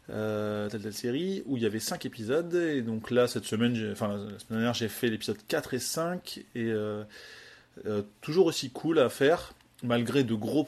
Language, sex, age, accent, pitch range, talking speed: French, male, 20-39, French, 110-130 Hz, 210 wpm